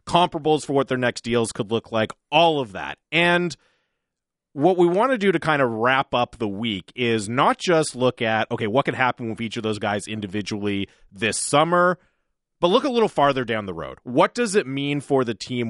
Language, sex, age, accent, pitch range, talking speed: English, male, 30-49, American, 120-165 Hz, 220 wpm